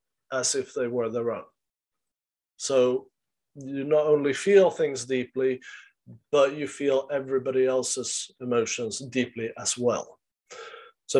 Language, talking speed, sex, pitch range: English, 125 wpm, male, 125-145 Hz